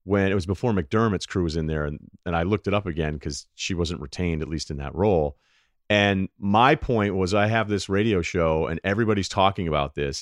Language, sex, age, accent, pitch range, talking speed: English, male, 40-59, American, 85-115 Hz, 230 wpm